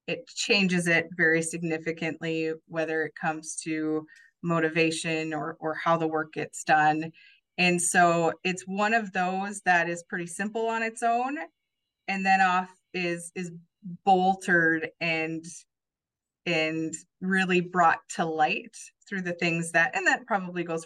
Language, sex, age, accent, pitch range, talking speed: English, female, 20-39, American, 165-195 Hz, 145 wpm